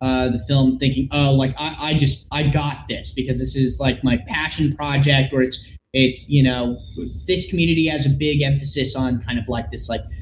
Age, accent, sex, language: 30-49, American, male, English